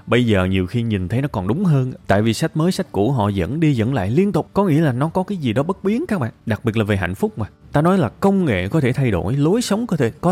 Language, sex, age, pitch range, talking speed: Vietnamese, male, 20-39, 95-135 Hz, 325 wpm